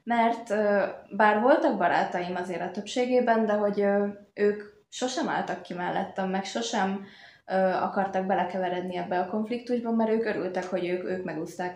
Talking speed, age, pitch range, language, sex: 145 wpm, 20-39, 180-210 Hz, Hungarian, female